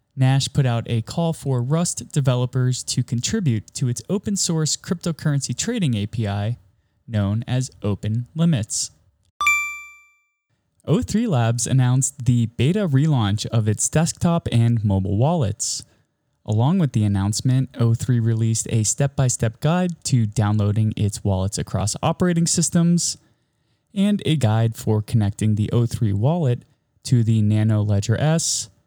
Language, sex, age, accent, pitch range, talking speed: English, male, 20-39, American, 110-150 Hz, 135 wpm